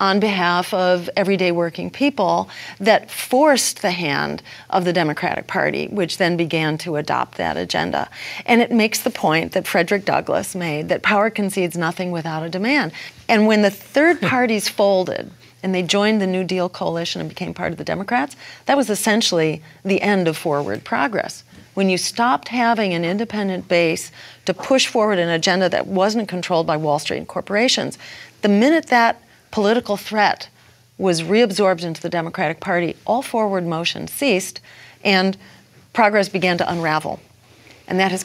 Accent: American